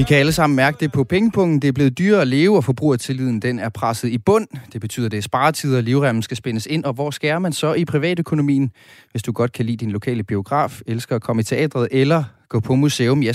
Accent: native